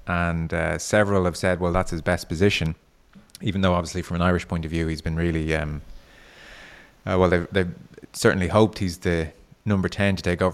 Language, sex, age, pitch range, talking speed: English, male, 20-39, 85-95 Hz, 205 wpm